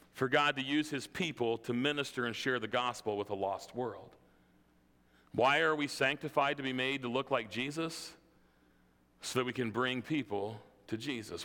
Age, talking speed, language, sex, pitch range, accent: 40-59, 185 wpm, English, male, 120-185 Hz, American